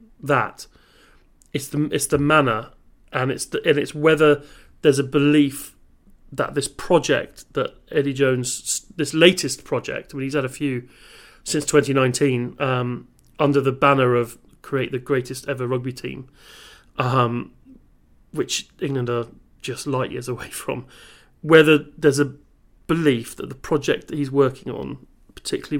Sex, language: male, English